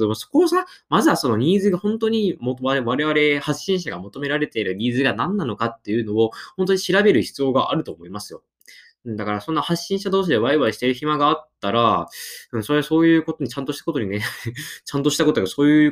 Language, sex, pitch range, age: Japanese, male, 115-160 Hz, 20-39